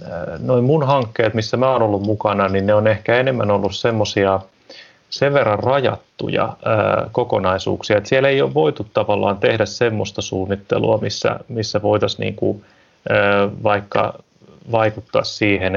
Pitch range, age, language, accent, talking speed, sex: 105-125 Hz, 30-49, Finnish, native, 135 wpm, male